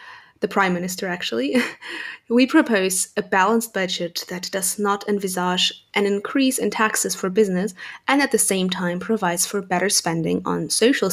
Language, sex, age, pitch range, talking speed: English, female, 20-39, 185-225 Hz, 160 wpm